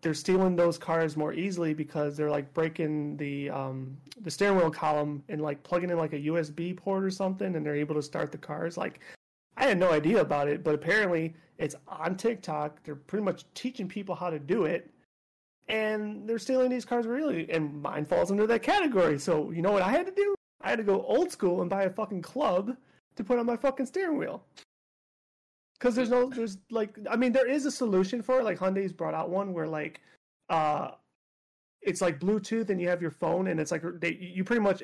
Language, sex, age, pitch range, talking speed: English, male, 30-49, 155-200 Hz, 220 wpm